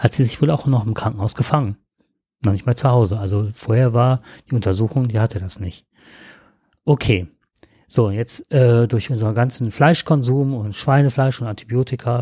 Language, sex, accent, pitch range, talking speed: German, male, German, 110-145 Hz, 170 wpm